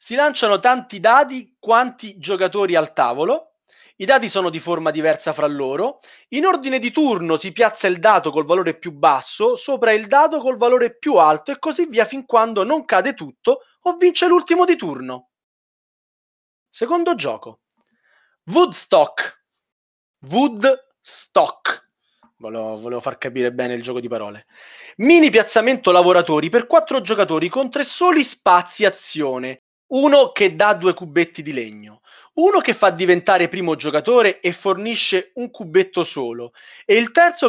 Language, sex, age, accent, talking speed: Italian, male, 30-49, native, 150 wpm